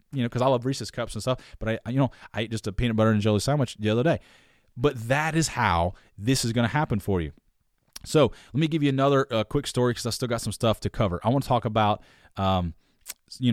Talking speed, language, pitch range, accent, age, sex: 265 wpm, English, 105-130 Hz, American, 20-39, male